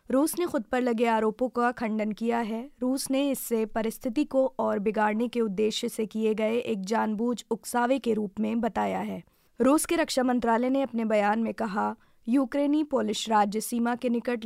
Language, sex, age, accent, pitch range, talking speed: Hindi, female, 20-39, native, 220-250 Hz, 185 wpm